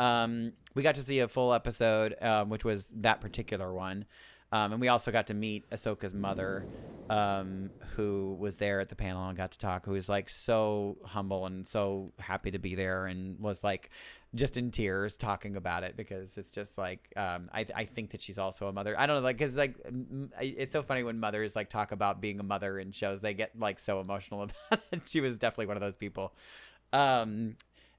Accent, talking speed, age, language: American, 220 wpm, 30-49, English